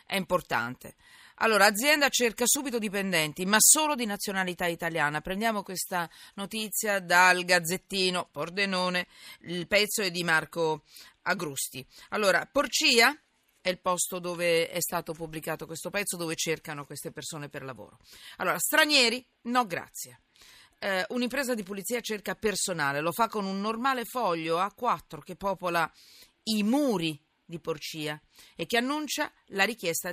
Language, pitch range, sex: Italian, 165-235 Hz, female